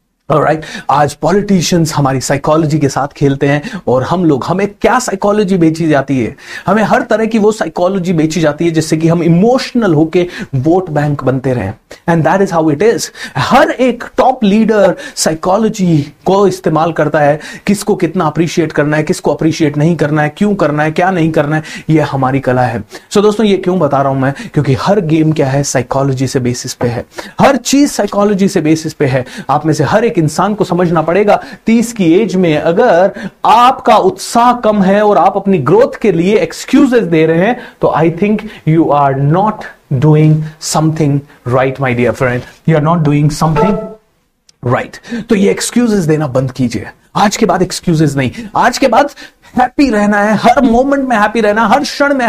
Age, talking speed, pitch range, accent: 30-49, 190 wpm, 150-215 Hz, native